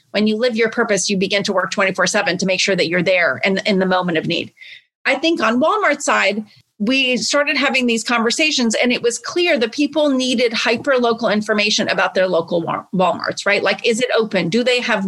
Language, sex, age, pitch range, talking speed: English, female, 30-49, 210-255 Hz, 215 wpm